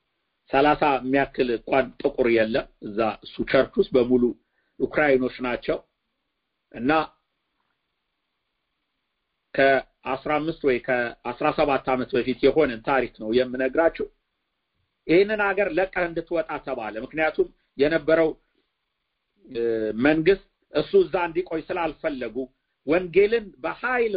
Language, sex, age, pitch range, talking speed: English, male, 50-69, 155-245 Hz, 60 wpm